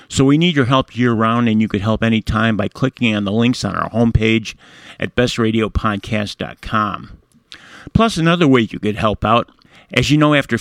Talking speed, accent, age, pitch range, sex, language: 180 wpm, American, 50-69, 110-125 Hz, male, English